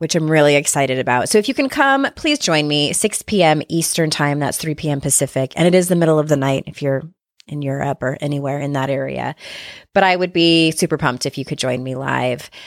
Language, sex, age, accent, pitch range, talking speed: English, female, 20-39, American, 145-185 Hz, 235 wpm